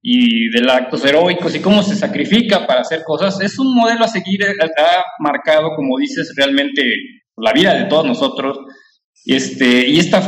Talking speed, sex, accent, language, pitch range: 170 wpm, male, Mexican, English, 155-220 Hz